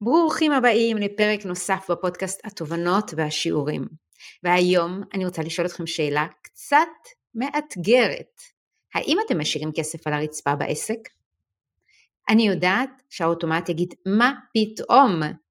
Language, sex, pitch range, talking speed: Hebrew, female, 170-215 Hz, 110 wpm